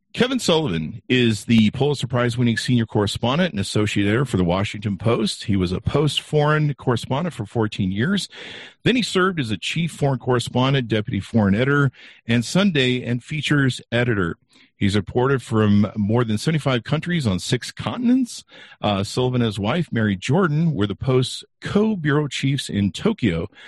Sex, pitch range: male, 105-145 Hz